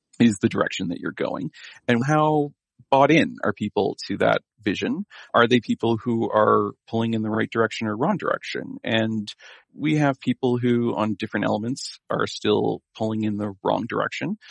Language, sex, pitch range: English, male, 105-130 Hz